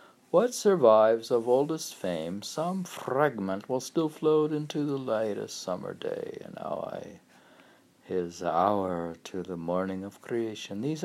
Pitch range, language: 100-145 Hz, English